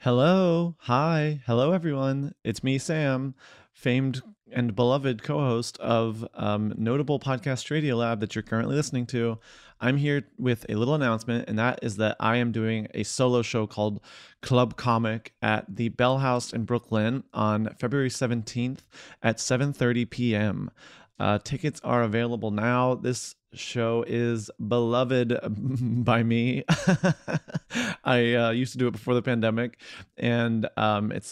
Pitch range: 110-130 Hz